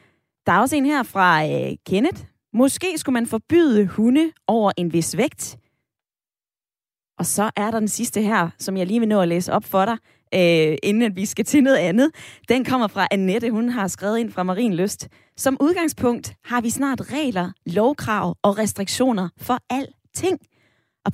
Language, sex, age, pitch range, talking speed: Danish, female, 20-39, 180-245 Hz, 185 wpm